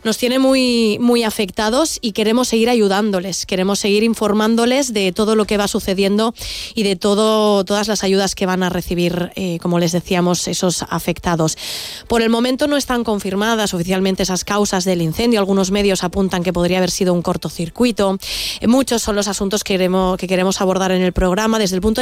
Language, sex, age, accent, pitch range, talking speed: Spanish, female, 20-39, Spanish, 185-225 Hz, 185 wpm